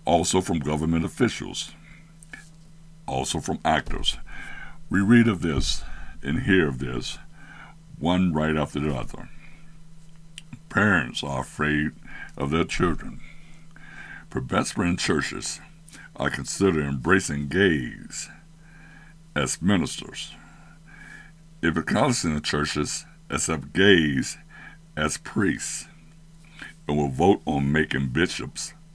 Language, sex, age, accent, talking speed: English, male, 60-79, American, 100 wpm